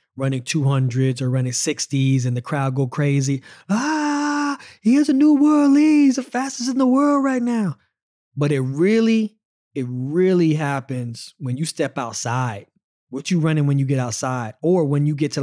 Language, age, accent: English, 20-39, American